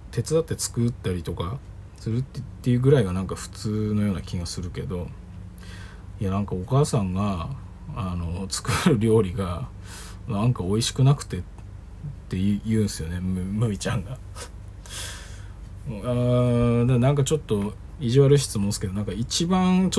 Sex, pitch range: male, 95-130 Hz